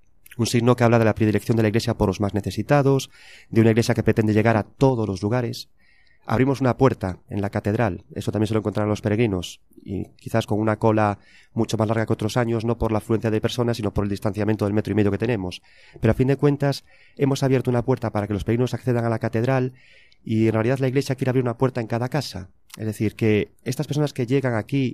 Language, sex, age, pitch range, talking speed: Spanish, male, 30-49, 105-125 Hz, 245 wpm